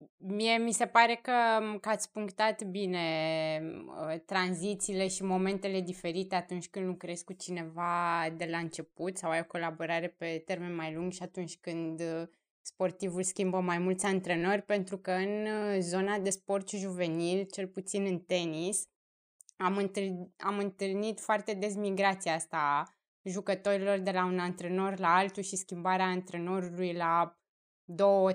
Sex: female